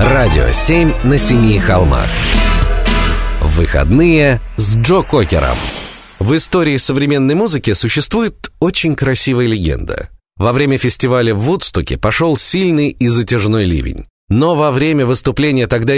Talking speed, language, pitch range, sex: 120 wpm, Russian, 95-135 Hz, male